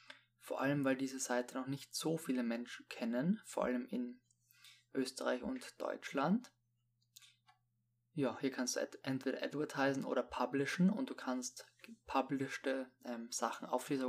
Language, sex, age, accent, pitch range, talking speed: German, male, 20-39, German, 120-140 Hz, 135 wpm